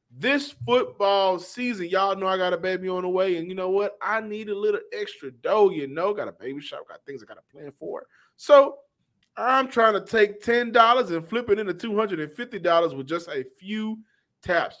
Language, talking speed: English, 205 wpm